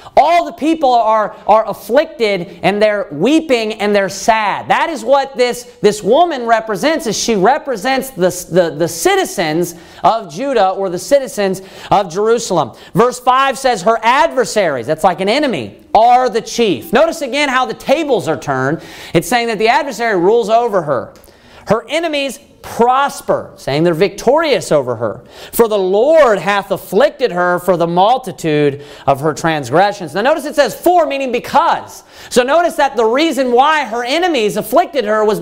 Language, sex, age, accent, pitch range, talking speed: English, male, 40-59, American, 185-255 Hz, 165 wpm